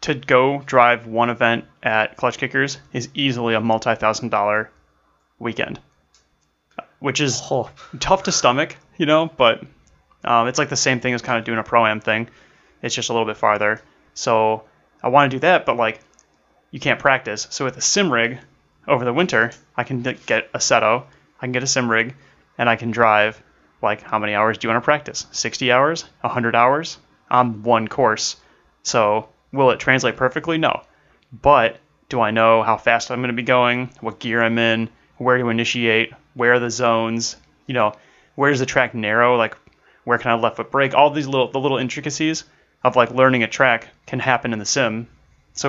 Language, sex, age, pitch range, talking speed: English, male, 30-49, 110-130 Hz, 195 wpm